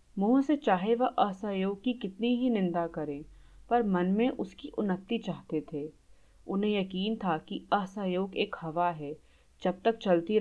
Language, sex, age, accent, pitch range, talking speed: Hindi, female, 30-49, native, 165-225 Hz, 160 wpm